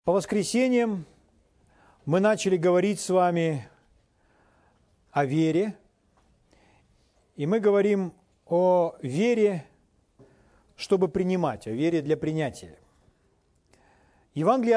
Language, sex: Russian, male